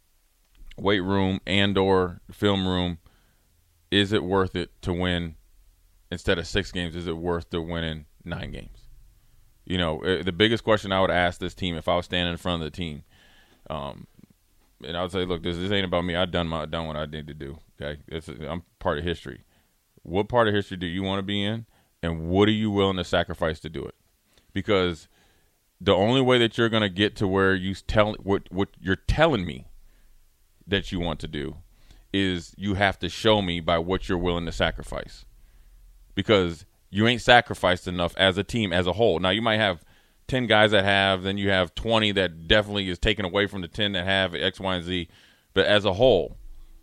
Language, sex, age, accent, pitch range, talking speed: English, male, 30-49, American, 85-100 Hz, 210 wpm